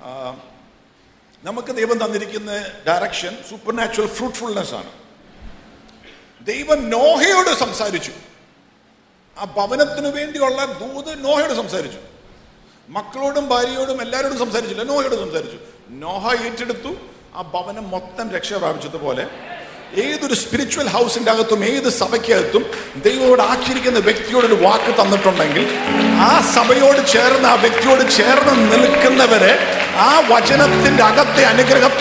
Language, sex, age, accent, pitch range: English, male, 50-69, Indian, 235-300 Hz